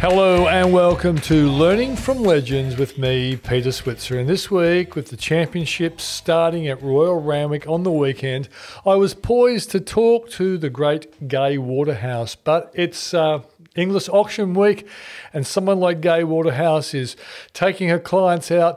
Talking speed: 160 wpm